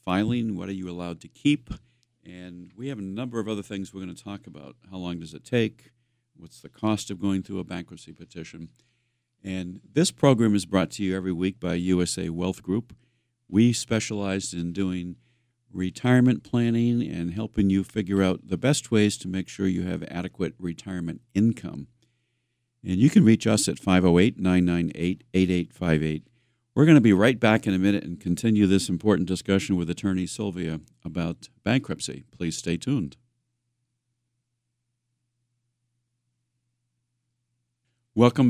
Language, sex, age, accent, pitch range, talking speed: English, male, 50-69, American, 90-120 Hz, 155 wpm